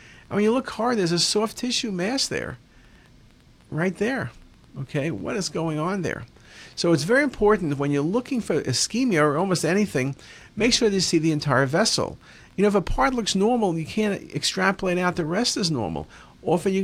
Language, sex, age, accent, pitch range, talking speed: English, male, 50-69, American, 135-195 Hz, 200 wpm